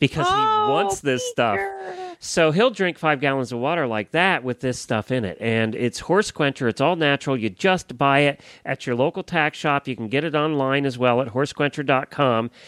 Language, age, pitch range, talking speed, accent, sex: English, 40-59, 115-155 Hz, 210 wpm, American, male